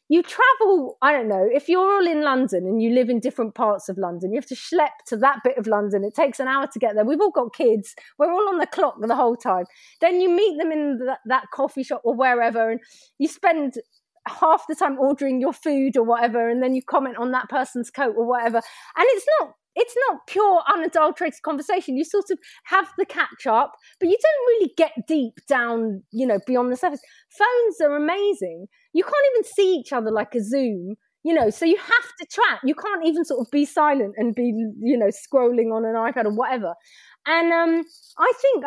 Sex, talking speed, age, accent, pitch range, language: female, 225 wpm, 30-49, British, 240-340 Hz, English